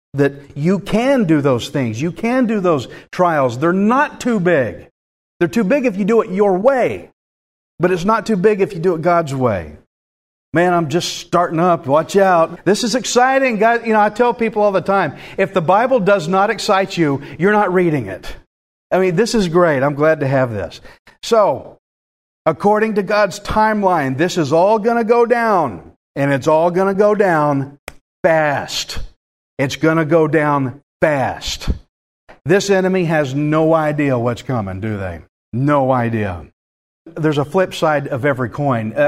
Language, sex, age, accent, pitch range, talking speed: English, male, 50-69, American, 135-195 Hz, 180 wpm